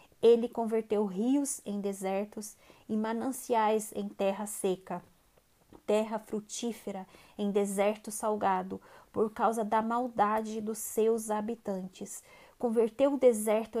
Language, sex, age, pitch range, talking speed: Portuguese, female, 20-39, 205-235 Hz, 110 wpm